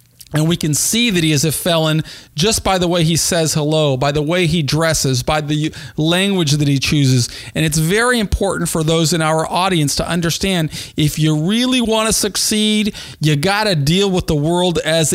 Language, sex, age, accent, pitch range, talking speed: English, male, 40-59, American, 155-185 Hz, 205 wpm